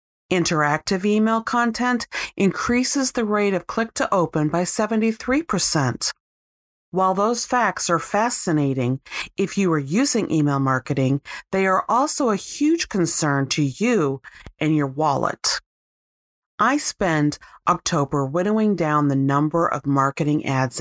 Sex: female